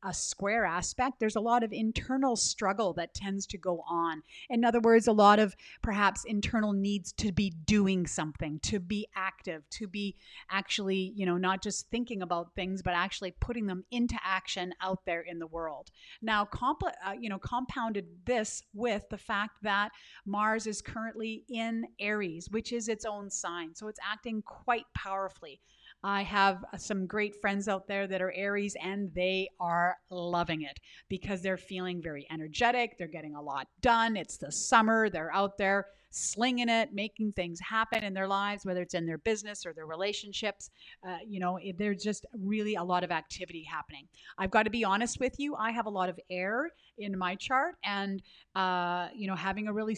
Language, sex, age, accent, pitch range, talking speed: English, female, 30-49, American, 185-220 Hz, 190 wpm